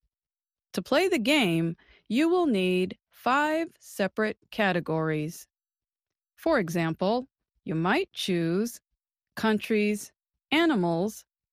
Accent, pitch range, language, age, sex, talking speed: American, 175-285 Hz, English, 30-49, female, 90 wpm